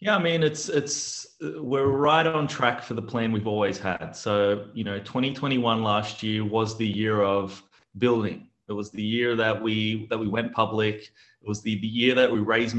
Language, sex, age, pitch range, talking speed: English, male, 30-49, 105-120 Hz, 205 wpm